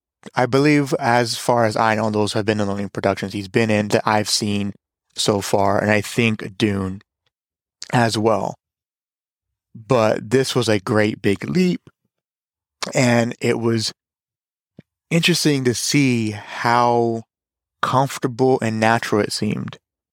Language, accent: English, American